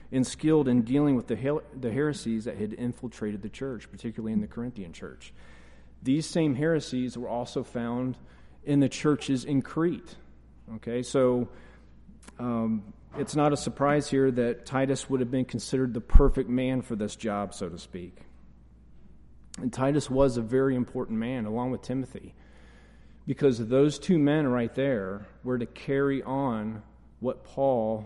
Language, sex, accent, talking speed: English, male, American, 160 wpm